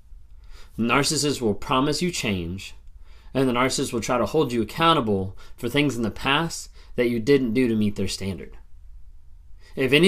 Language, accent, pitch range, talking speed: English, American, 105-140 Hz, 175 wpm